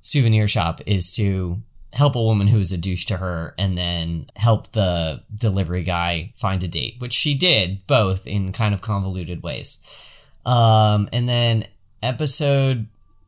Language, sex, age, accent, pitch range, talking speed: English, male, 10-29, American, 95-120 Hz, 160 wpm